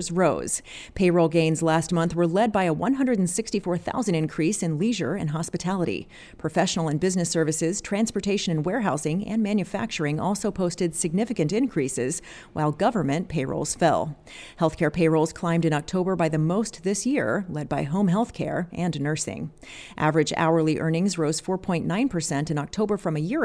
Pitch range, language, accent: 160-205 Hz, English, American